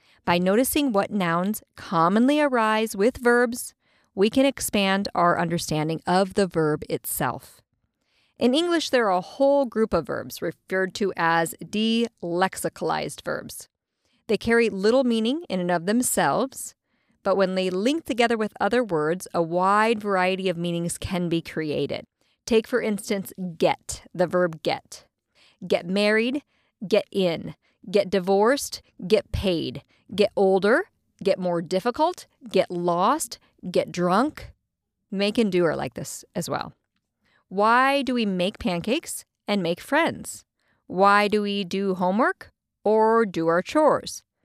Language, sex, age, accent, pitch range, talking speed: English, female, 30-49, American, 180-235 Hz, 140 wpm